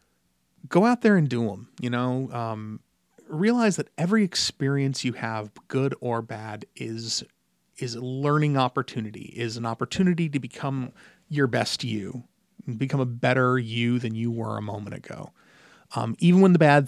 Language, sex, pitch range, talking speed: English, male, 110-140 Hz, 165 wpm